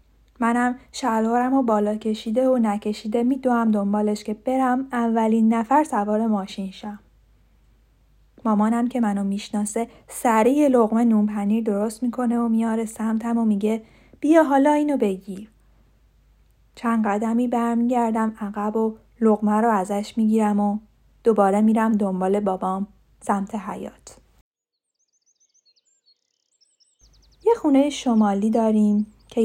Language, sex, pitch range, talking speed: Persian, female, 210-245 Hz, 115 wpm